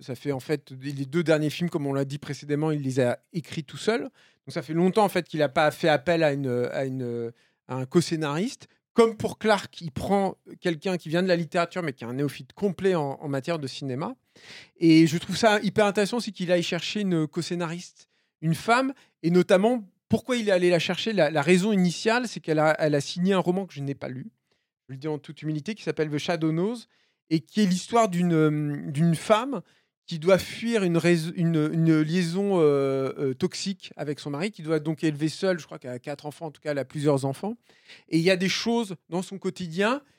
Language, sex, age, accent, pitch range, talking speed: French, male, 40-59, French, 150-190 Hz, 235 wpm